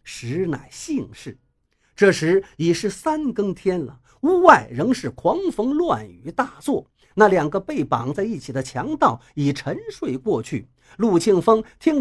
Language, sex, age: Chinese, male, 50-69